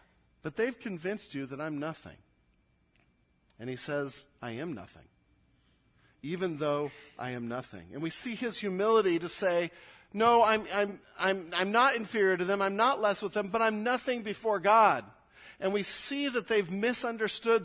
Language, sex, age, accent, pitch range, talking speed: English, male, 40-59, American, 120-195 Hz, 170 wpm